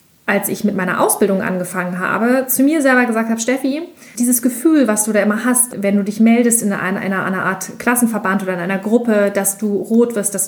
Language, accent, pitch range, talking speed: German, German, 205-250 Hz, 225 wpm